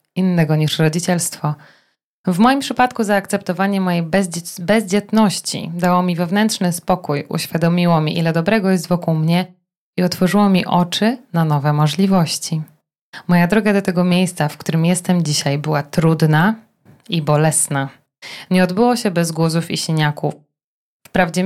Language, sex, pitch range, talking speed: Polish, female, 155-185 Hz, 135 wpm